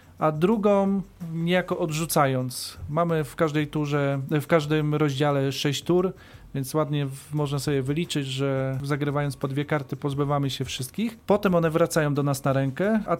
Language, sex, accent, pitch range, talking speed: Polish, male, native, 140-160 Hz, 160 wpm